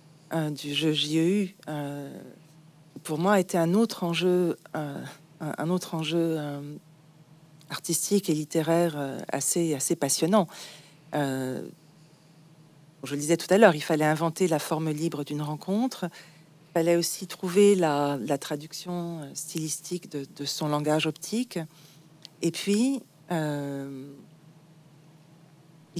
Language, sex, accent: French, female, French